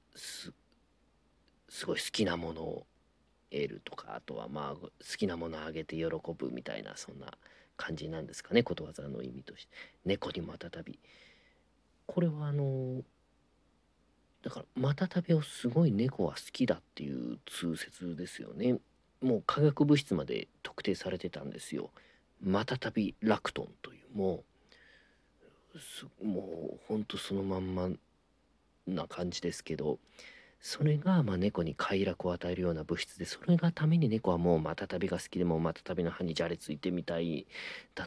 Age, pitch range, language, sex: 40-59, 80-120 Hz, Japanese, male